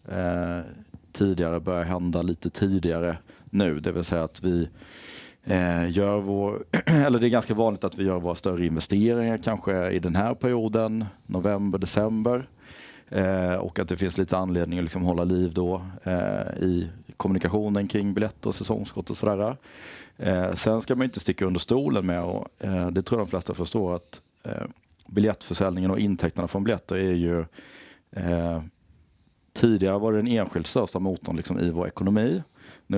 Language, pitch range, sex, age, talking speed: Swedish, 90-105 Hz, male, 30-49, 155 wpm